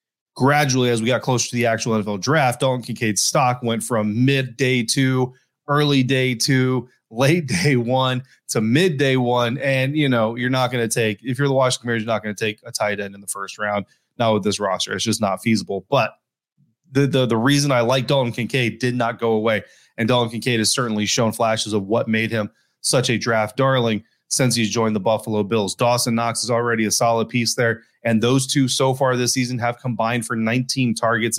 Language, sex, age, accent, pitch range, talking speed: English, male, 20-39, American, 115-140 Hz, 220 wpm